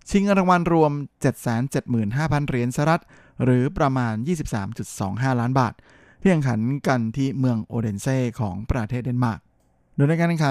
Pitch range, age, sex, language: 110-135 Hz, 20-39, male, Thai